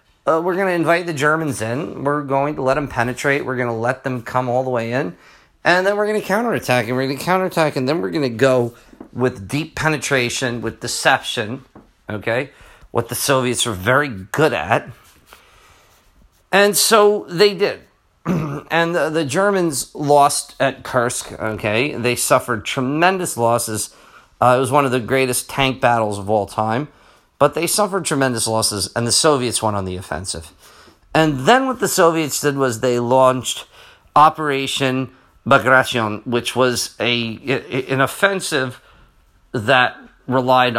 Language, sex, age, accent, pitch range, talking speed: English, male, 40-59, American, 120-155 Hz, 165 wpm